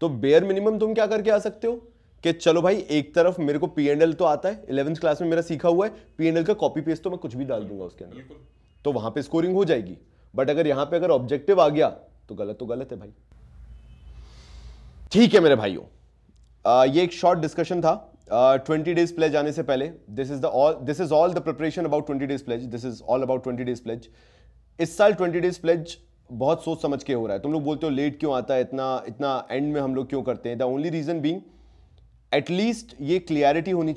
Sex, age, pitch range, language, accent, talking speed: male, 30-49, 130-170 Hz, Hindi, native, 205 wpm